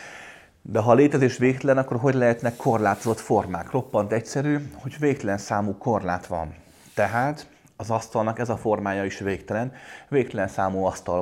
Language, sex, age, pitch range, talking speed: Hungarian, male, 30-49, 100-130 Hz, 145 wpm